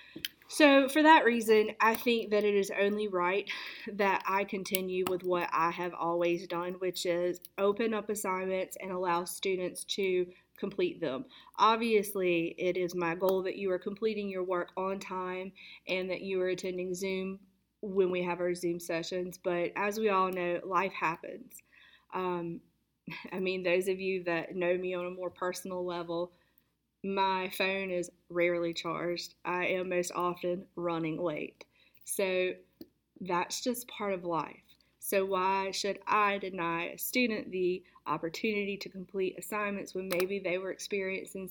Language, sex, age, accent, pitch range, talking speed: English, female, 30-49, American, 180-205 Hz, 160 wpm